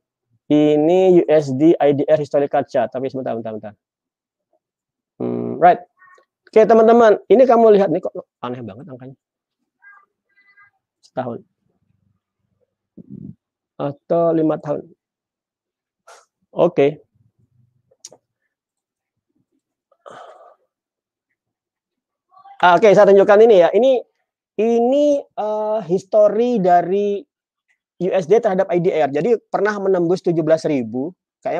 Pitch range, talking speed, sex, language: 155-260 Hz, 90 wpm, male, Indonesian